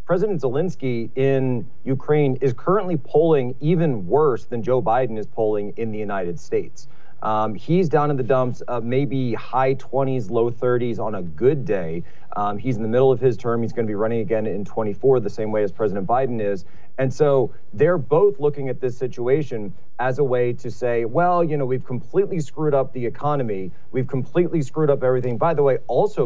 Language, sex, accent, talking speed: English, male, American, 200 wpm